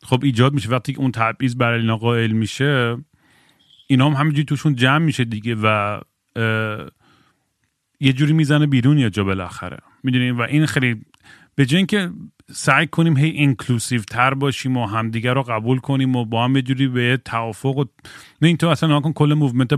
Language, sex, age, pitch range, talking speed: Persian, male, 30-49, 115-145 Hz, 175 wpm